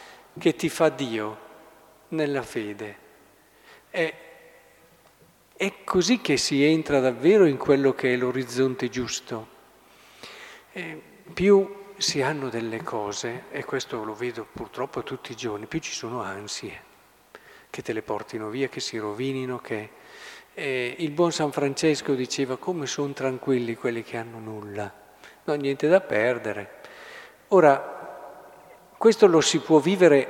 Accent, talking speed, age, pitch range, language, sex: native, 135 wpm, 50-69, 125-160 Hz, Italian, male